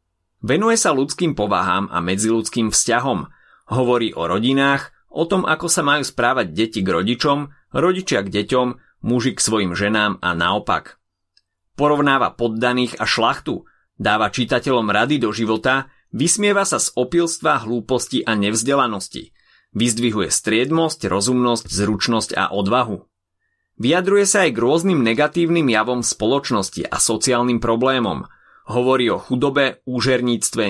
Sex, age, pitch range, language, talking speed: male, 30-49, 105-135 Hz, Slovak, 125 wpm